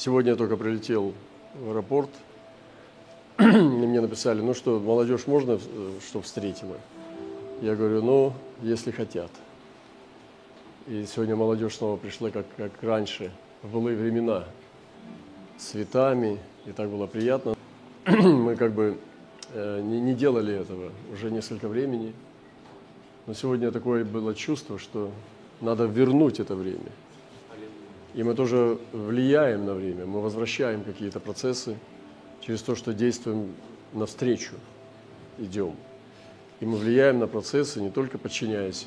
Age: 40-59